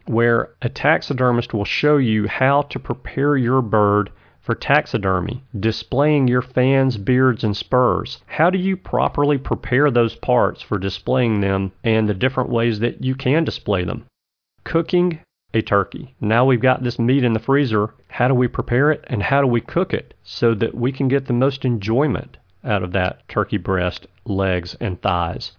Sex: male